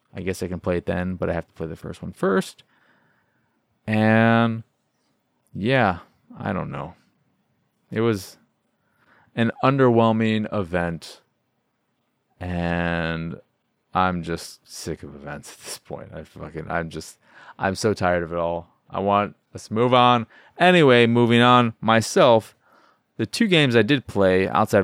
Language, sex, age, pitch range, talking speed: English, male, 20-39, 95-120 Hz, 145 wpm